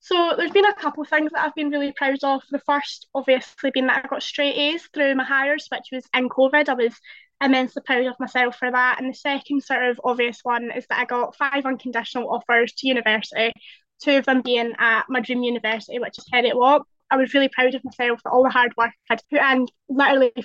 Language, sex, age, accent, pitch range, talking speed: English, female, 20-39, British, 245-280 Hz, 240 wpm